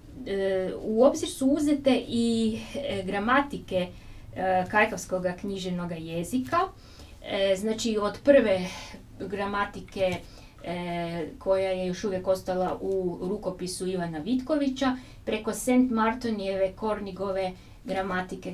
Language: Croatian